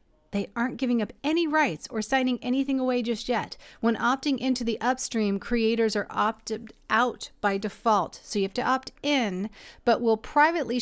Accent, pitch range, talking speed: American, 210-255 Hz, 180 wpm